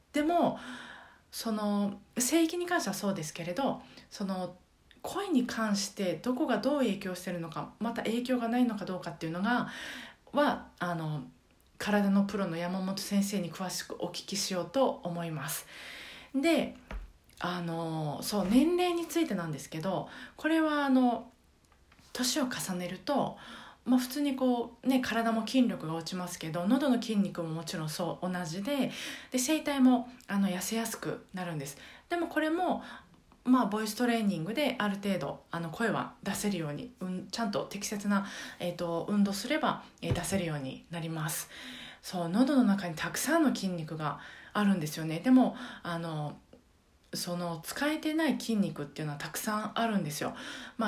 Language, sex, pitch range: Japanese, female, 175-250 Hz